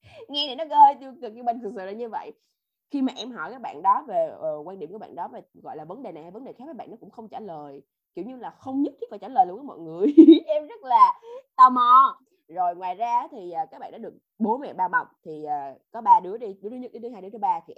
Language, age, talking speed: Vietnamese, 20-39, 305 wpm